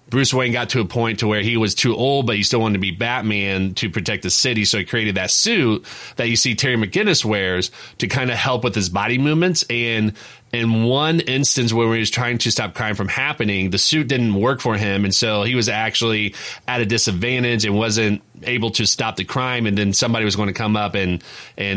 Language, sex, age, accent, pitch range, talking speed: English, male, 30-49, American, 100-120 Hz, 240 wpm